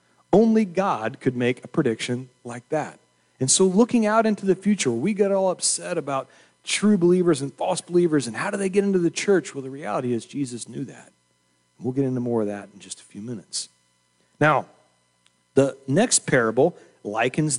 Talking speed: 190 wpm